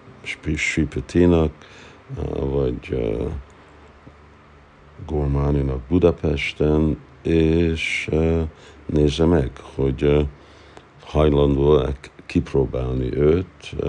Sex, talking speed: male, 50 wpm